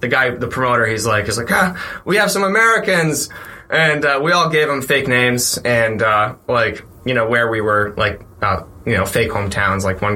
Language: English